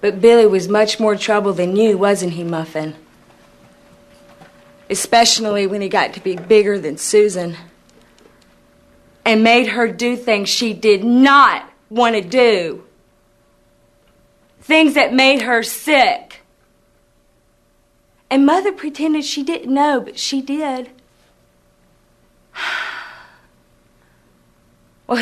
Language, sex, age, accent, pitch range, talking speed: English, female, 40-59, American, 205-280 Hz, 110 wpm